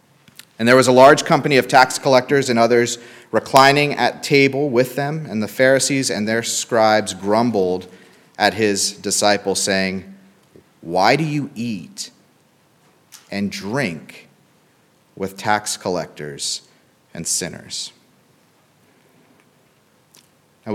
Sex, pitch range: male, 100-130 Hz